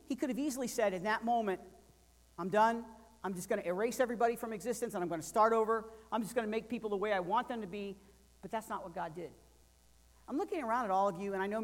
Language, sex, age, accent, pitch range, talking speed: English, male, 40-59, American, 160-225 Hz, 275 wpm